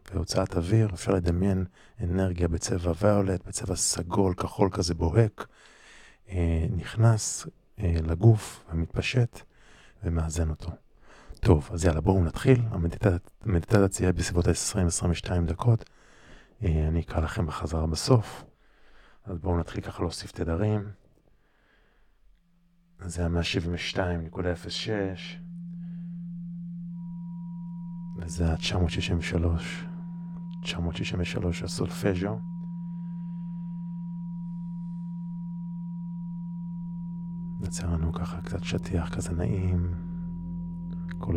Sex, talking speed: male, 75 wpm